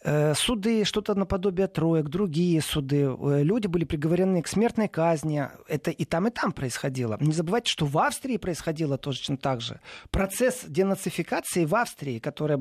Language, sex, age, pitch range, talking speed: Russian, male, 30-49, 155-200 Hz, 150 wpm